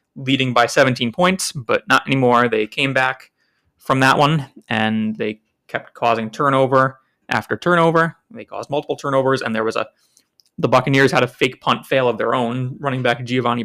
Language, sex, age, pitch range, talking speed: English, male, 20-39, 120-135 Hz, 180 wpm